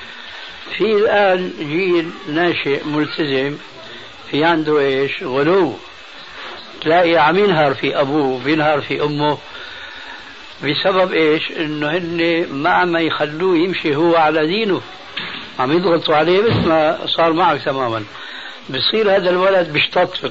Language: Arabic